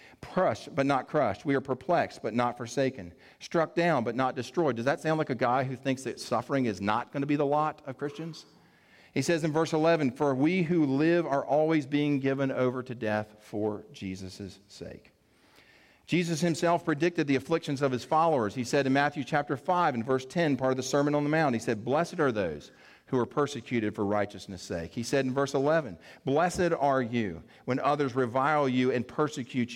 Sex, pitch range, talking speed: male, 120-155 Hz, 205 wpm